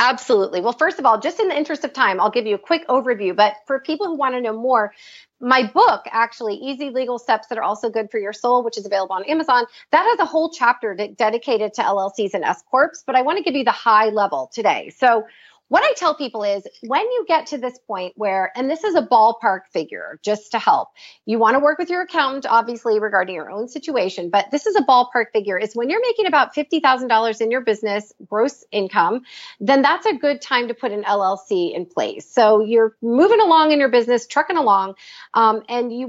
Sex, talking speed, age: female, 225 wpm, 30-49